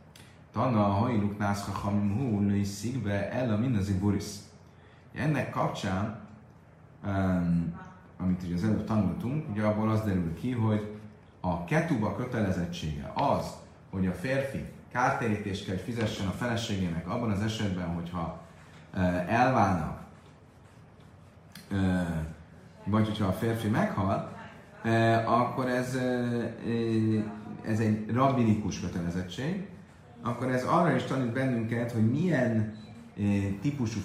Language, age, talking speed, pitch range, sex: Hungarian, 30-49, 105 wpm, 90-115 Hz, male